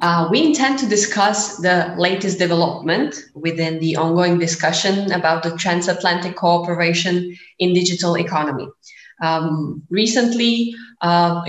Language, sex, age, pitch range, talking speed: Slovak, female, 20-39, 170-190 Hz, 115 wpm